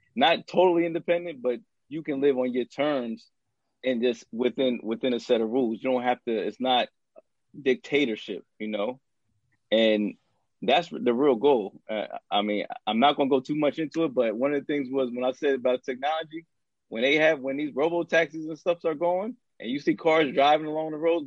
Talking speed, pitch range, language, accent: 210 wpm, 115-155 Hz, English, American